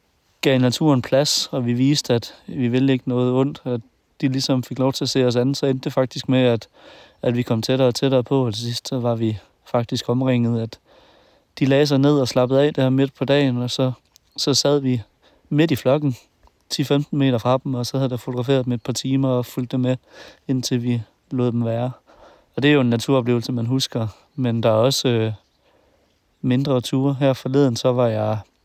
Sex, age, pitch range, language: male, 30-49, 120-135 Hz, Danish